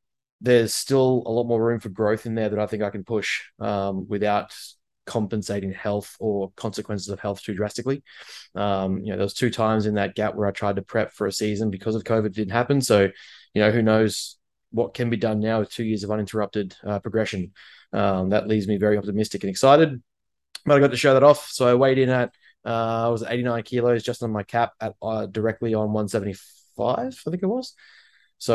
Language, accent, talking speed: English, Australian, 225 wpm